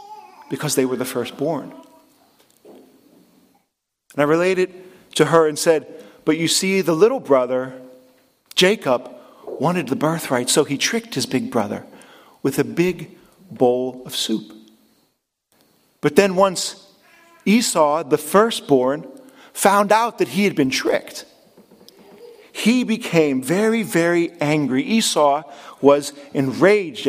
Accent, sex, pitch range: American, male, 155-235 Hz